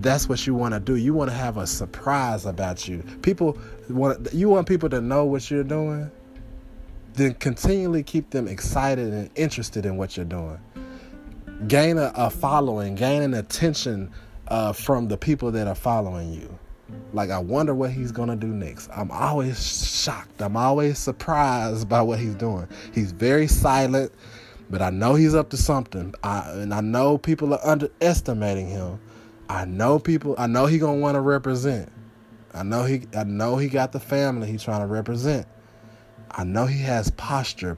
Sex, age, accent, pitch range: male, 20-39, American, 105-135 Hz